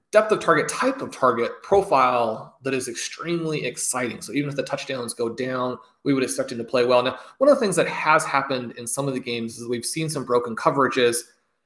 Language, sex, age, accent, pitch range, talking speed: English, male, 30-49, American, 120-155 Hz, 225 wpm